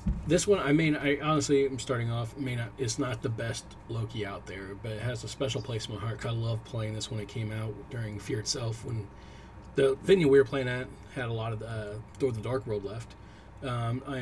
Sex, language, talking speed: male, English, 245 wpm